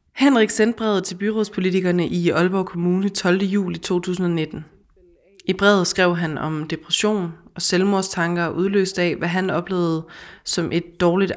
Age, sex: 20-39, female